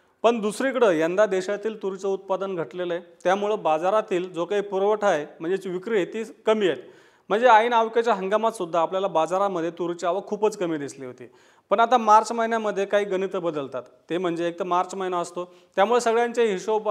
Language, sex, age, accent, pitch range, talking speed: Marathi, male, 40-59, native, 180-220 Hz, 165 wpm